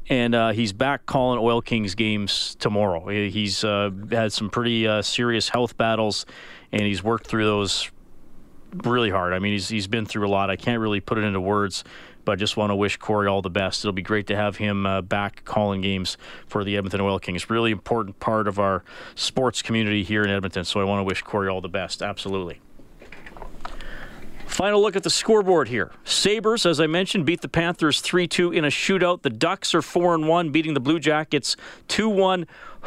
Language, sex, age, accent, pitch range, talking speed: English, male, 40-59, American, 105-170 Hz, 205 wpm